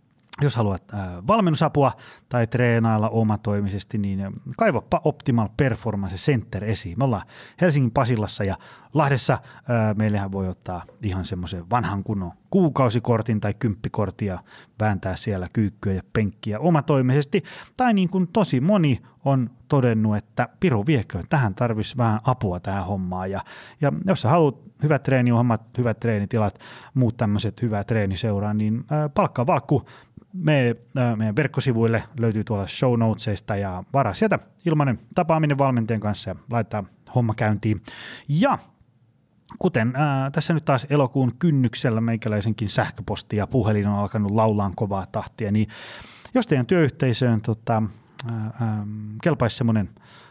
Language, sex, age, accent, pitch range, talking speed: Finnish, male, 30-49, native, 105-140 Hz, 130 wpm